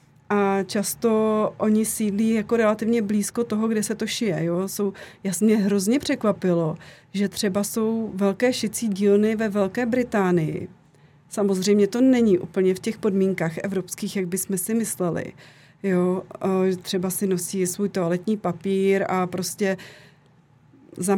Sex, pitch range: female, 185-215 Hz